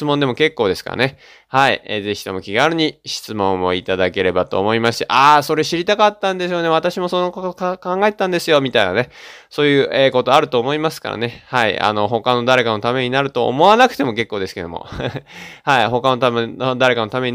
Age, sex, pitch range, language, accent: 20-39, male, 115-175 Hz, Japanese, native